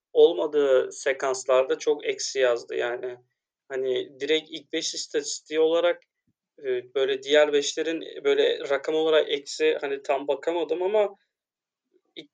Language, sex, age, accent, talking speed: Turkish, male, 30-49, native, 115 wpm